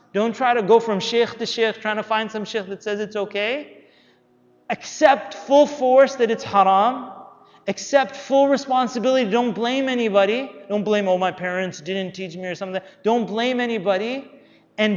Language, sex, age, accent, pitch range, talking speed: English, male, 30-49, American, 170-220 Hz, 175 wpm